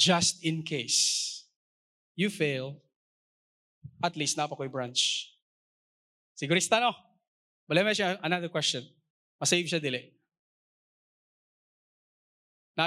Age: 20-39